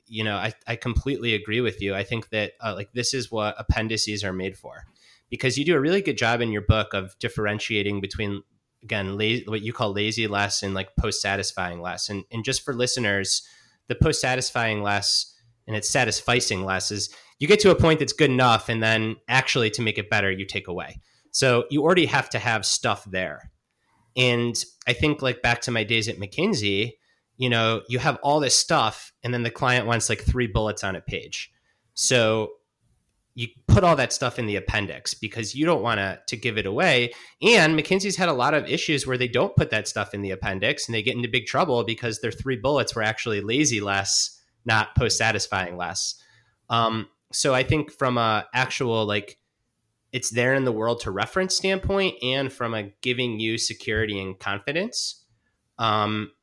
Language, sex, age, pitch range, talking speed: English, male, 30-49, 105-125 Hz, 200 wpm